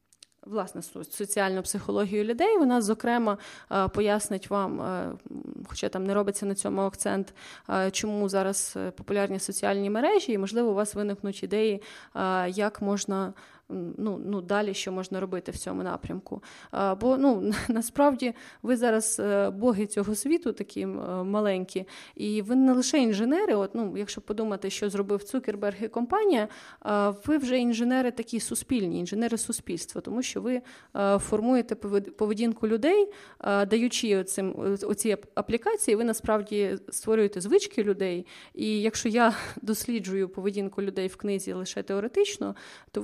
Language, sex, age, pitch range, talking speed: Ukrainian, female, 20-39, 195-230 Hz, 130 wpm